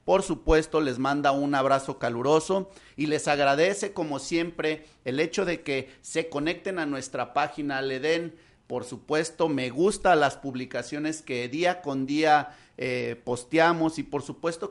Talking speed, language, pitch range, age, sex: 155 wpm, Spanish, 135-165 Hz, 40-59, male